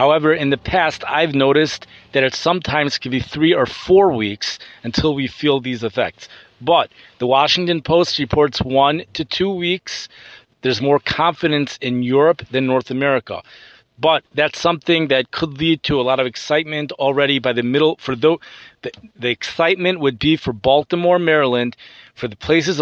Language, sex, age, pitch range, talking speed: English, male, 30-49, 130-160 Hz, 170 wpm